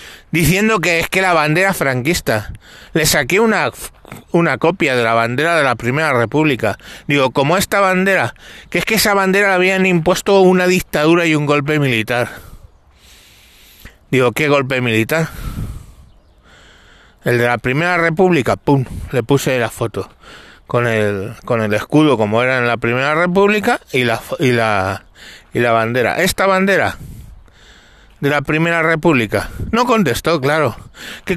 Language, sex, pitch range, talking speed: Spanish, male, 120-195 Hz, 150 wpm